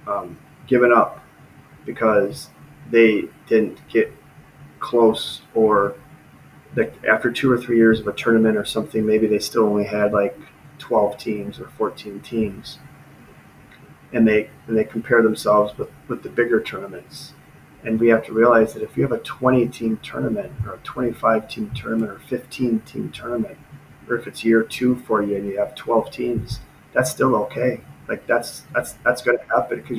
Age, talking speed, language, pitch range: 30-49, 170 wpm, German, 110-145 Hz